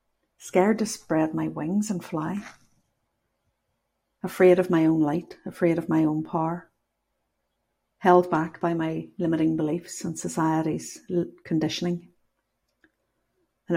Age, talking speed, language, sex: 50-69, 120 wpm, English, female